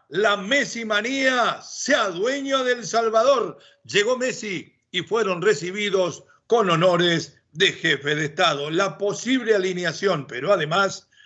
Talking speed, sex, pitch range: 125 wpm, male, 180-225 Hz